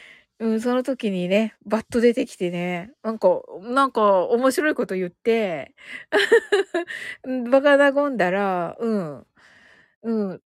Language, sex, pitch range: Japanese, female, 200-270 Hz